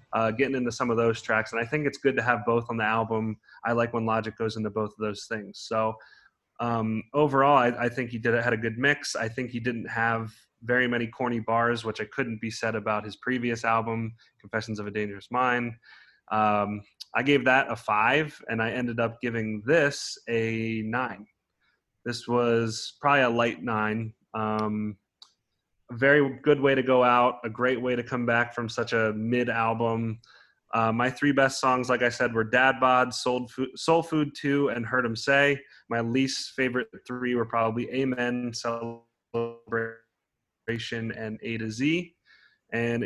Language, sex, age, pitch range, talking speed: English, male, 20-39, 110-125 Hz, 185 wpm